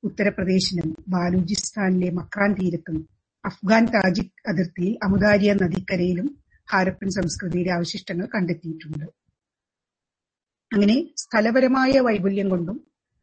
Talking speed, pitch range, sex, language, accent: 75 wpm, 185-230 Hz, female, Malayalam, native